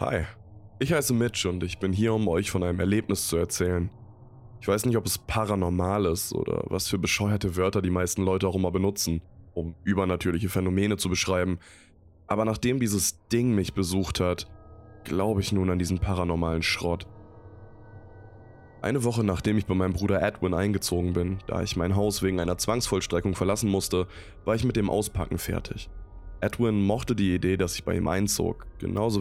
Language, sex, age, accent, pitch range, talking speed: German, male, 20-39, German, 90-110 Hz, 180 wpm